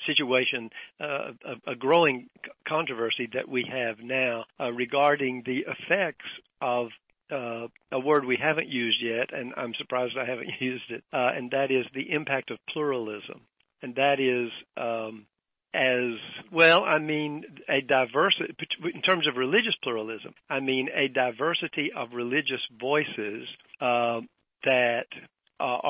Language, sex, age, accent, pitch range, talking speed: English, male, 50-69, American, 120-140 Hz, 145 wpm